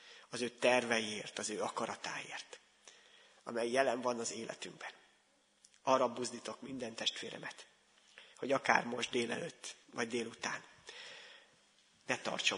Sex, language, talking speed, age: male, Hungarian, 110 wpm, 30-49